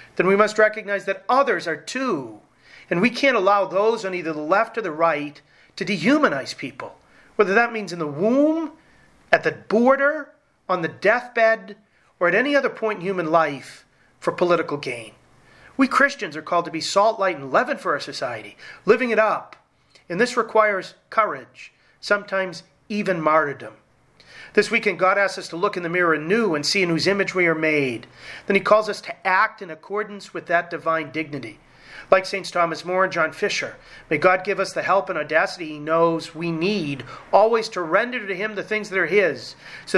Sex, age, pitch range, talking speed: male, 40-59, 160-215 Hz, 195 wpm